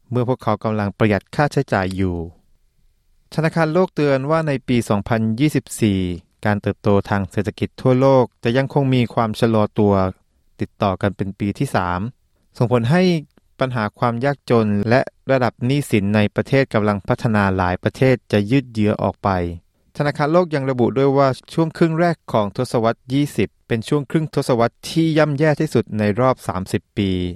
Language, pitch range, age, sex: Thai, 100-135 Hz, 20-39, male